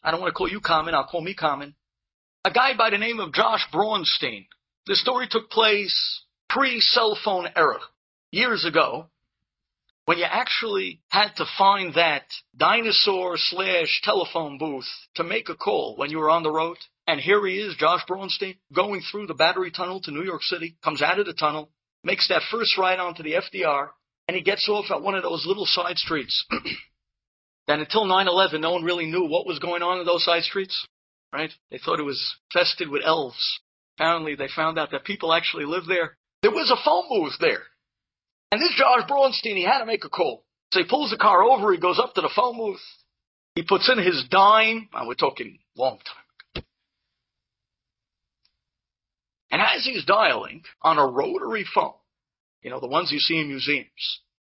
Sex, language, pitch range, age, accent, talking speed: male, English, 160-215 Hz, 50-69, American, 195 wpm